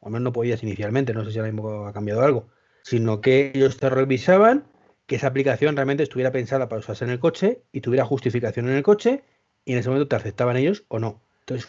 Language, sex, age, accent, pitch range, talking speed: Spanish, male, 30-49, Spanish, 120-165 Hz, 235 wpm